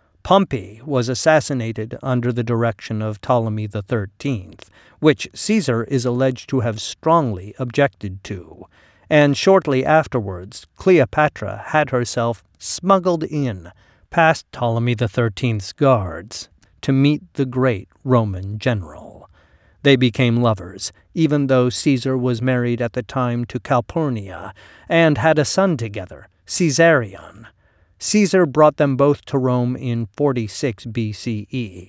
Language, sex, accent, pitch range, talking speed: English, male, American, 110-140 Hz, 120 wpm